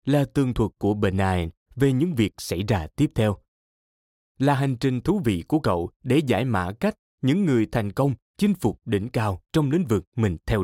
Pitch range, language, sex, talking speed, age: 95-140 Hz, Vietnamese, male, 205 wpm, 20-39